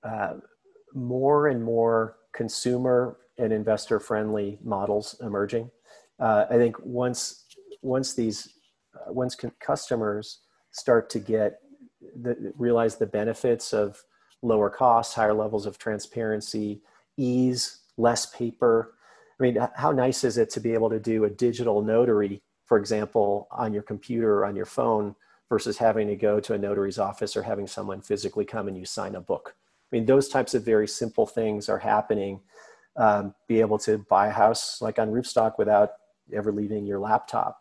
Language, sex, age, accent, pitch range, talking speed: English, male, 40-59, American, 105-125 Hz, 165 wpm